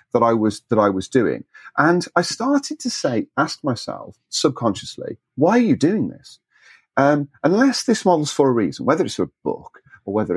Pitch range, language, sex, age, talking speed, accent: 115-165 Hz, English, male, 40-59, 195 wpm, British